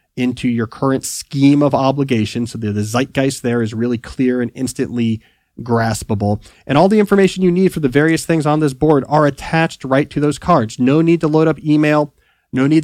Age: 30-49